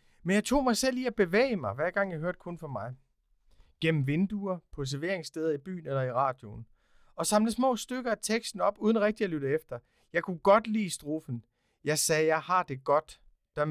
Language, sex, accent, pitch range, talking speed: Danish, male, native, 130-195 Hz, 215 wpm